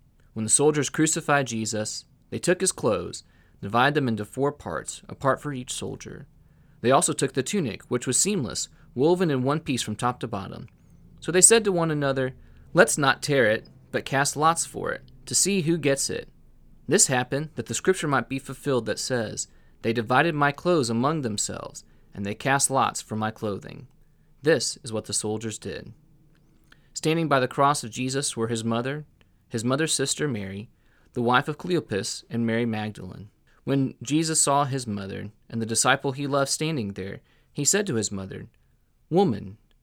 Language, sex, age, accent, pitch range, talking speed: English, male, 30-49, American, 110-145 Hz, 185 wpm